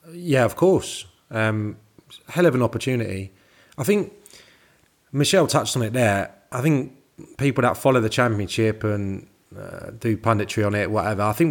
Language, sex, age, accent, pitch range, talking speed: English, male, 30-49, British, 100-120 Hz, 160 wpm